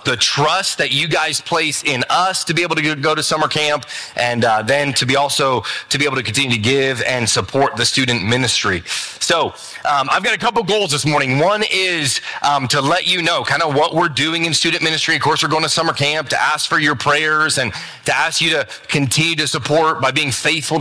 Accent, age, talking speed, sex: American, 30-49, 235 wpm, male